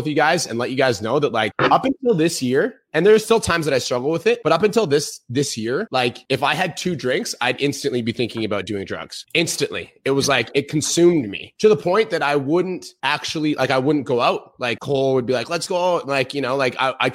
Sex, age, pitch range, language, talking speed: male, 20-39, 120-150 Hz, English, 260 wpm